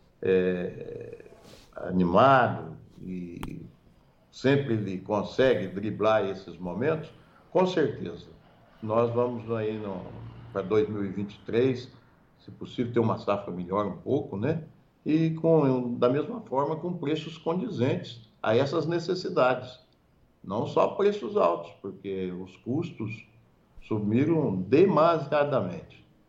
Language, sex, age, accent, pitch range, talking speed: Portuguese, male, 60-79, Brazilian, 100-130 Hz, 105 wpm